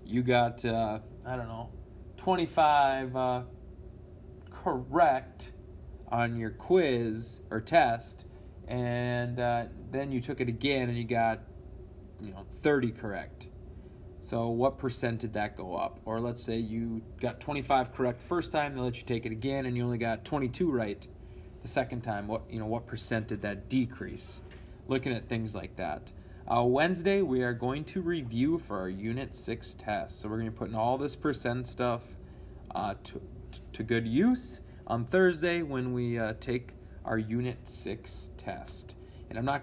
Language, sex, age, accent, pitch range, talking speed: English, male, 30-49, American, 110-125 Hz, 170 wpm